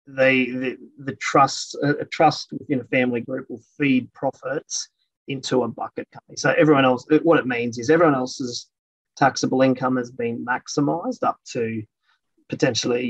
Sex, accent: male, Australian